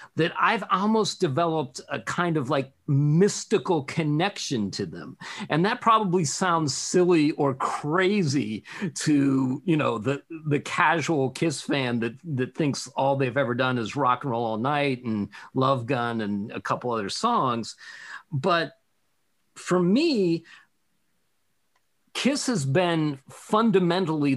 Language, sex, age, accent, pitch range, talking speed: English, male, 50-69, American, 130-170 Hz, 135 wpm